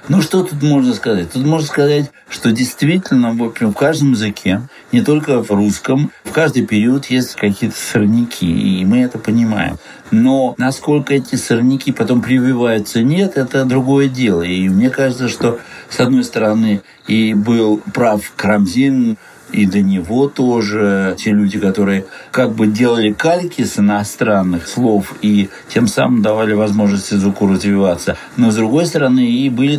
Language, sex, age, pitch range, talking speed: Russian, male, 60-79, 105-130 Hz, 150 wpm